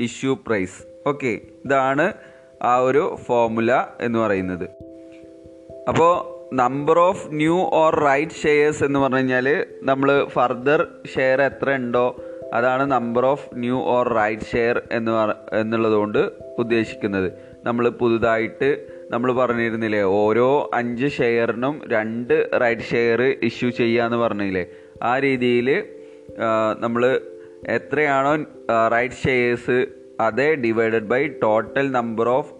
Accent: native